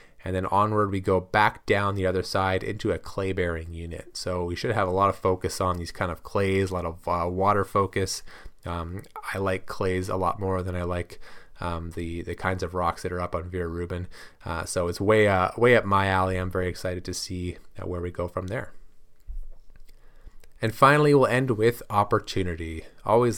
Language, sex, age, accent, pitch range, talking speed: English, male, 30-49, American, 90-110 Hz, 215 wpm